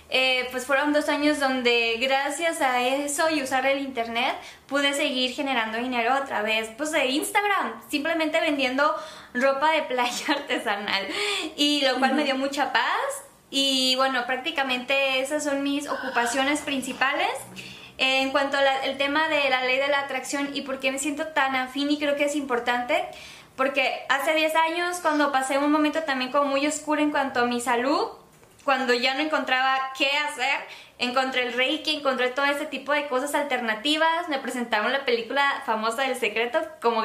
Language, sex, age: Spanish, female, 20-39